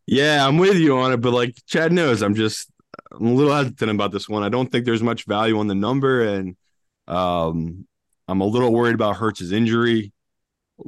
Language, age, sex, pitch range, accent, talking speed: English, 20-39, male, 100-125 Hz, American, 205 wpm